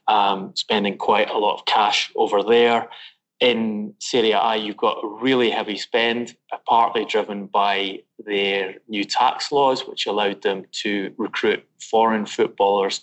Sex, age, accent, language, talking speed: male, 20-39, British, English, 145 wpm